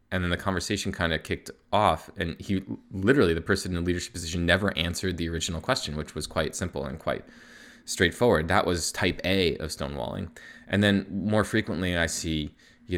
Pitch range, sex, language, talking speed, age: 85-100 Hz, male, English, 195 wpm, 20-39